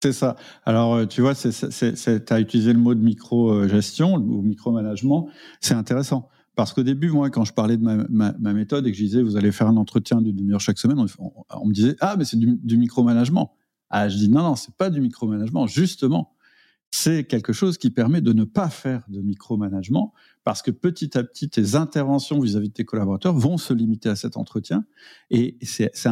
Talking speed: 230 wpm